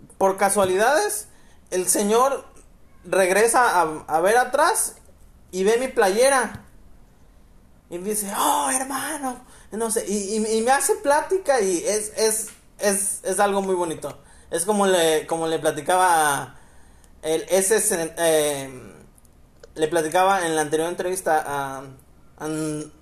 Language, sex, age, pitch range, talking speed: Spanish, male, 30-49, 150-215 Hz, 135 wpm